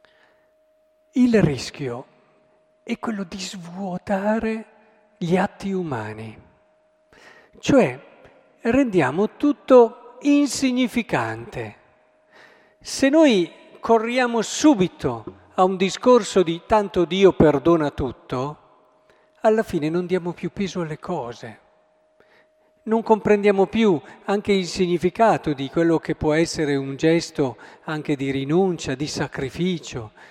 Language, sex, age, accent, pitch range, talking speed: Italian, male, 50-69, native, 160-210 Hz, 100 wpm